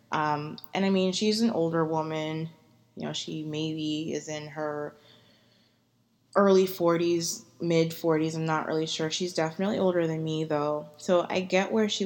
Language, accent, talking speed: English, American, 170 wpm